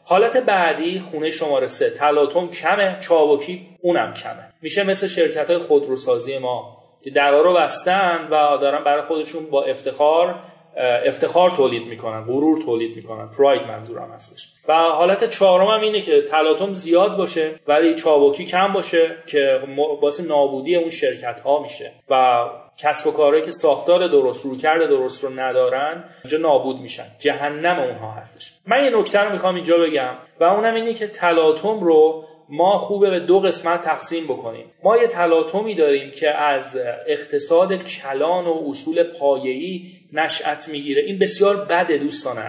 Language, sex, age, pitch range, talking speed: Persian, male, 30-49, 145-185 Hz, 150 wpm